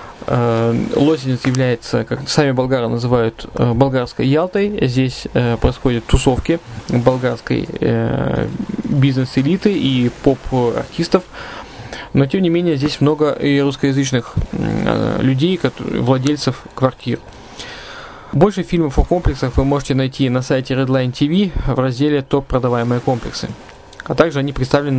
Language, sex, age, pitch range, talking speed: Russian, male, 20-39, 125-150 Hz, 115 wpm